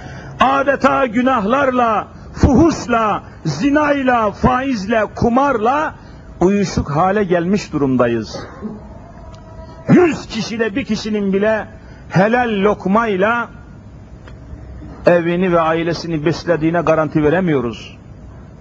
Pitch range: 150-215 Hz